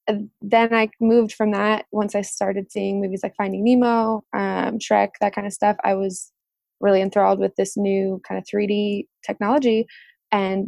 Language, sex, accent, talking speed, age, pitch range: English, female, American, 175 wpm, 20-39, 195-225 Hz